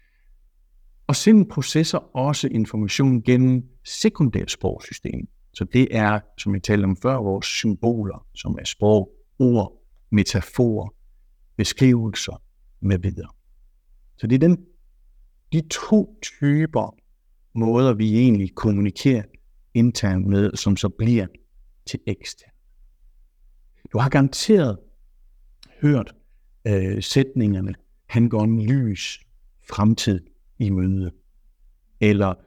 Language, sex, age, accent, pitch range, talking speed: Danish, male, 60-79, native, 100-135 Hz, 105 wpm